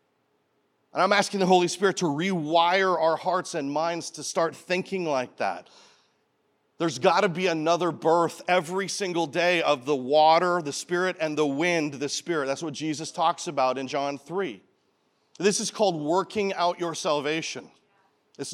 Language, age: English, 40-59